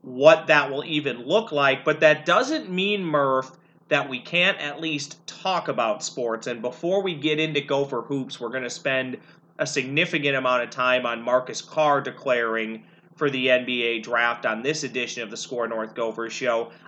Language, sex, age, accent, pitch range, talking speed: English, male, 30-49, American, 125-155 Hz, 185 wpm